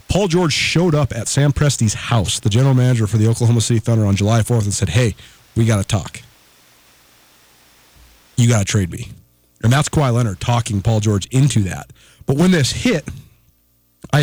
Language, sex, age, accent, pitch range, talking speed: English, male, 30-49, American, 110-145 Hz, 190 wpm